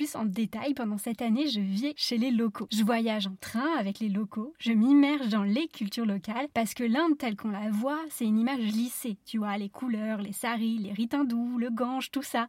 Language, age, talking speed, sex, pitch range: French, 20-39, 225 wpm, female, 220-285 Hz